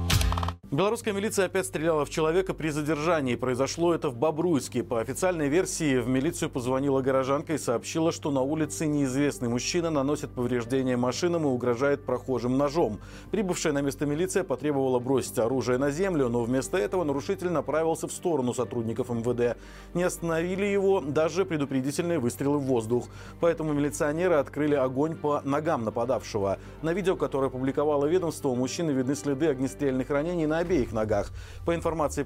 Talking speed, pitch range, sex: 150 wpm, 125-160 Hz, male